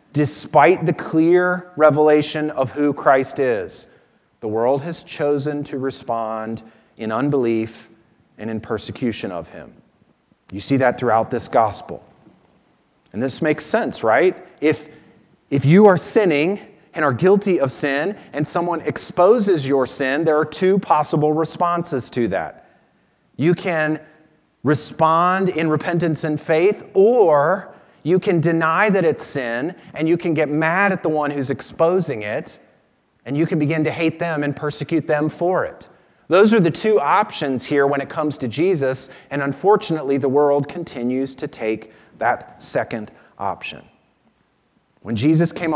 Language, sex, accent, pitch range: English, male, American, 130-170 Hz